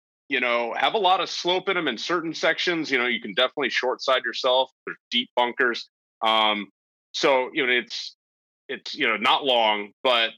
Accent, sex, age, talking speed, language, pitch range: American, male, 30-49, 195 wpm, English, 100-120 Hz